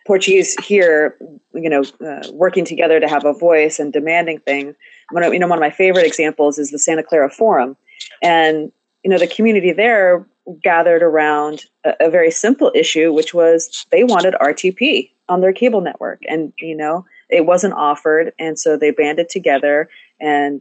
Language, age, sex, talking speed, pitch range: English, 30-49, female, 175 wpm, 150-185 Hz